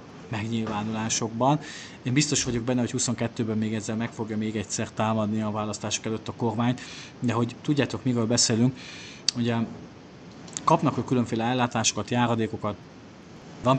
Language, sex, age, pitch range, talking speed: Hungarian, male, 30-49, 110-135 Hz, 135 wpm